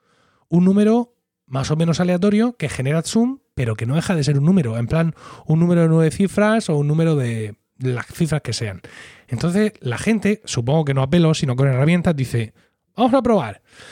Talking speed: 200 wpm